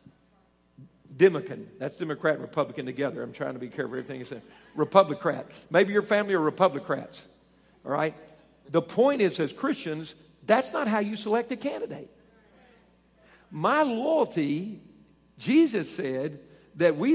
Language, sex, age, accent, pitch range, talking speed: English, male, 50-69, American, 155-250 Hz, 145 wpm